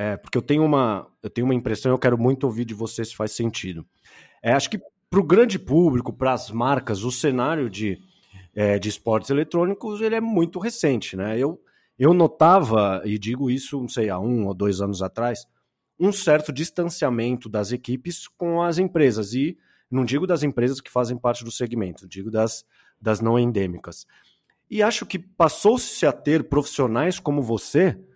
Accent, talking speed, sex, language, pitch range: Brazilian, 185 wpm, male, Portuguese, 115-160 Hz